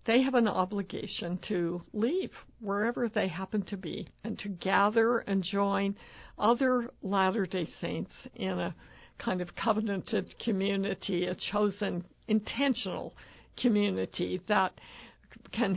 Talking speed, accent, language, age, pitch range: 120 wpm, American, English, 60-79, 190-230 Hz